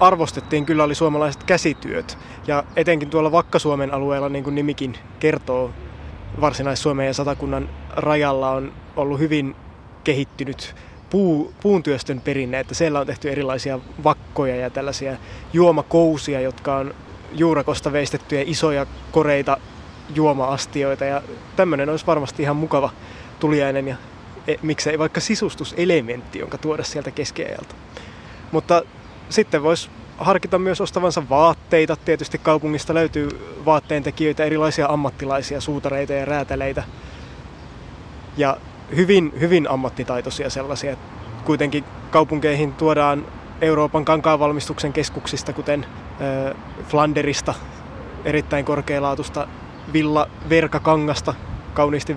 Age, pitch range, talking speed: 20-39, 135-155 Hz, 105 wpm